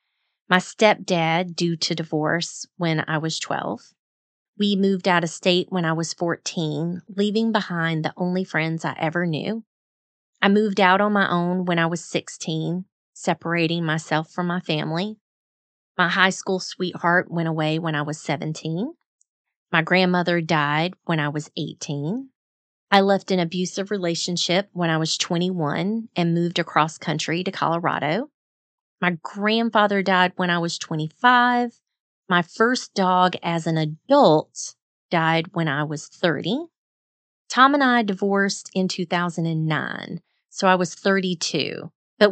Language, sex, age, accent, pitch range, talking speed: English, female, 30-49, American, 160-195 Hz, 145 wpm